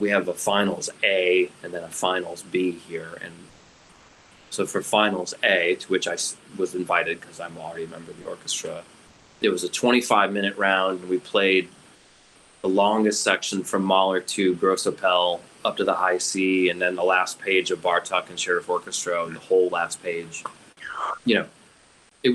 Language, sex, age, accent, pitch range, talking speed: English, male, 30-49, American, 95-120 Hz, 185 wpm